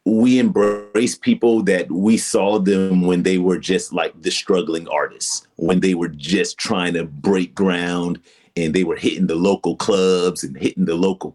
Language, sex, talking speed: English, male, 180 wpm